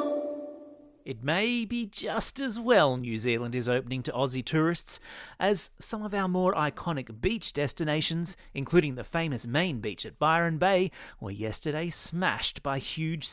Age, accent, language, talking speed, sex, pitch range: 30-49, Australian, English, 155 wpm, male, 120-170 Hz